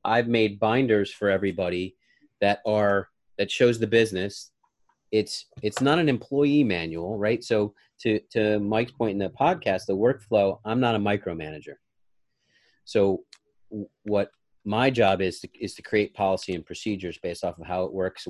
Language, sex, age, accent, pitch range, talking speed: English, male, 30-49, American, 95-110 Hz, 165 wpm